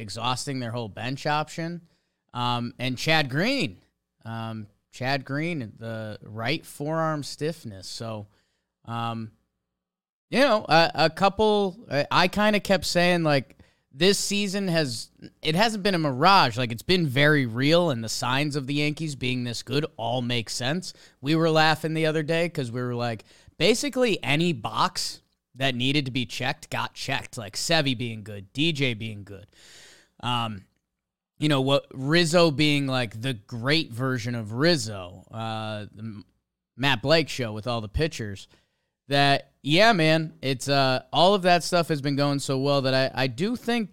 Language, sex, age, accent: English, male, 20-39, American